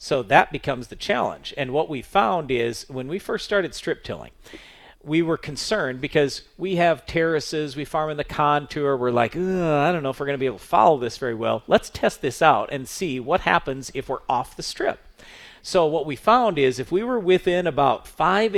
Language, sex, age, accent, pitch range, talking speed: English, male, 40-59, American, 135-180 Hz, 220 wpm